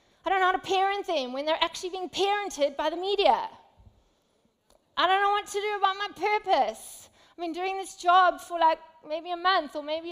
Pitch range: 250-350 Hz